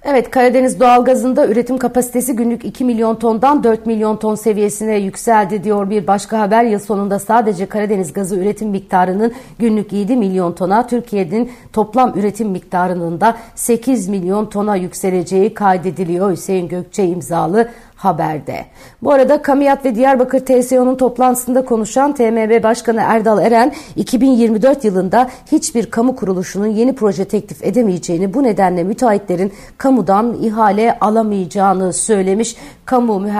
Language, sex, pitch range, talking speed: Turkish, female, 190-235 Hz, 130 wpm